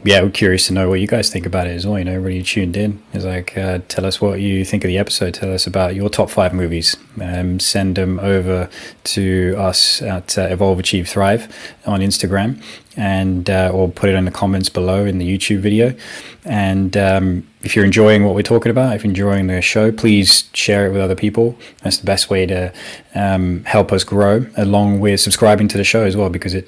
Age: 20-39